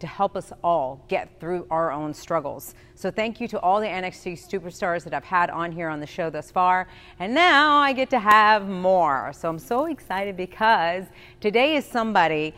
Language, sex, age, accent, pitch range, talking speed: English, female, 40-59, American, 165-225 Hz, 200 wpm